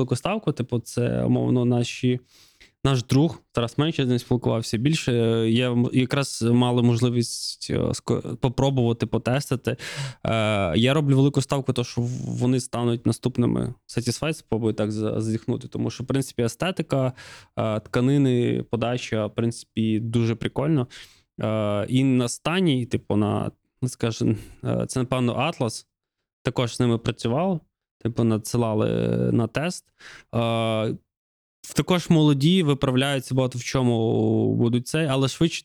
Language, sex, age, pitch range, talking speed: Ukrainian, male, 20-39, 115-135 Hz, 125 wpm